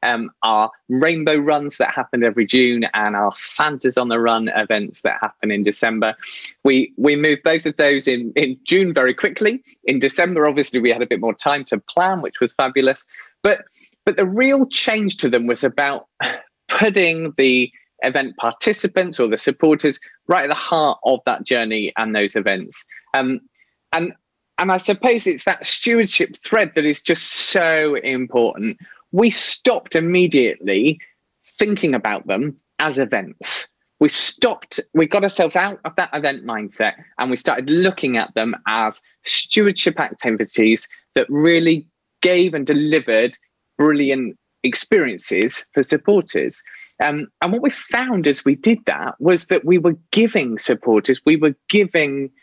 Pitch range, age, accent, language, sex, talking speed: 130-195 Hz, 20-39, British, English, male, 160 wpm